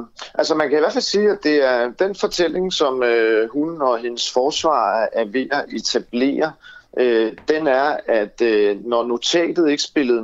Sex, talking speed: male, 165 wpm